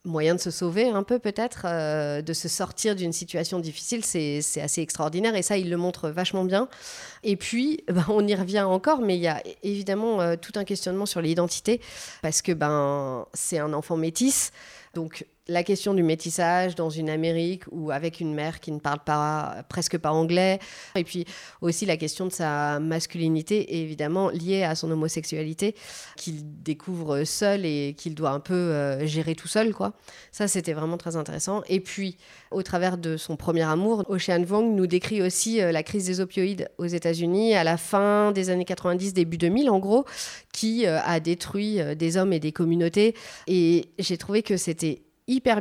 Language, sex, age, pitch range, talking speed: French, female, 40-59, 160-200 Hz, 190 wpm